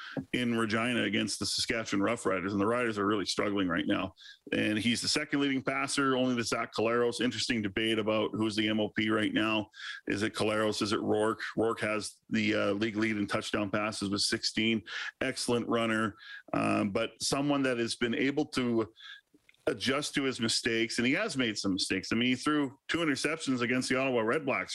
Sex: male